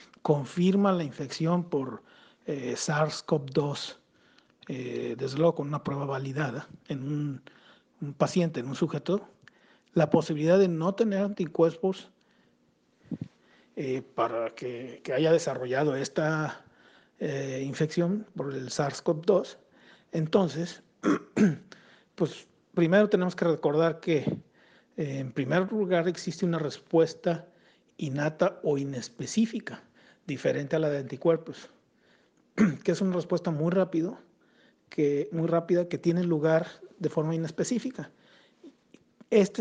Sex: male